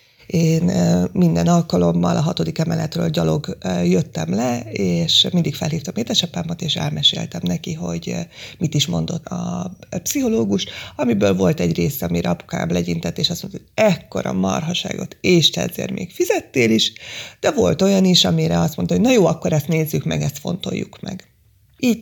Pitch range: 145-175 Hz